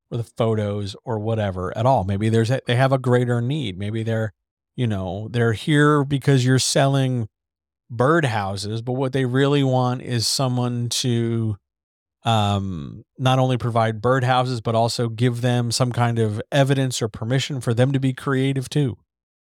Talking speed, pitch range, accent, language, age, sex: 165 wpm, 110-135 Hz, American, English, 40-59, male